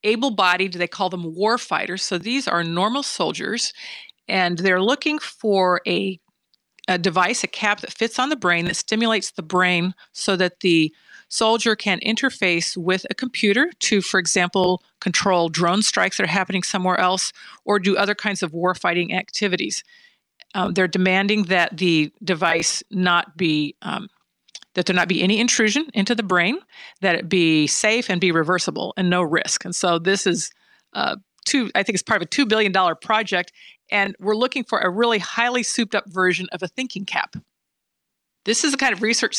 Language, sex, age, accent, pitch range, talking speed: English, female, 40-59, American, 180-220 Hz, 180 wpm